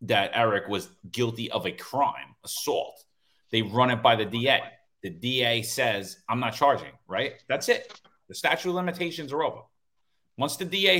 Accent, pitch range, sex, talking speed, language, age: American, 110-145 Hz, male, 175 wpm, English, 30-49